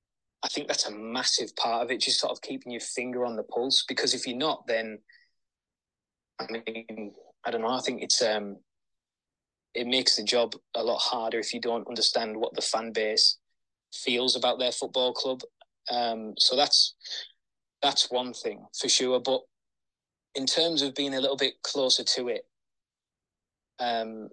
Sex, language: male, English